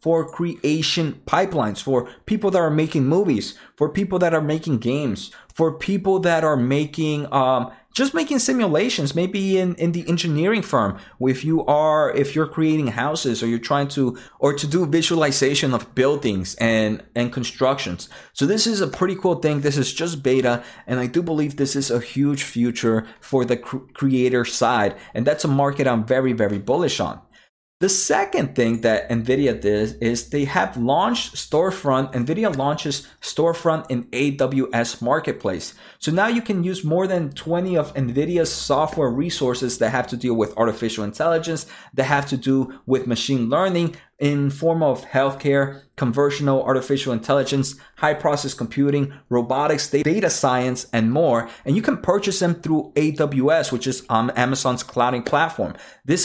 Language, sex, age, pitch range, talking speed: English, male, 30-49, 125-160 Hz, 165 wpm